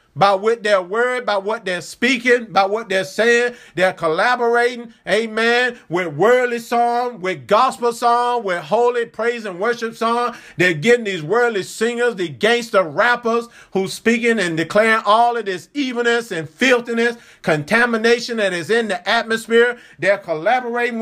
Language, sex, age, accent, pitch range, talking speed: English, male, 50-69, American, 200-240 Hz, 150 wpm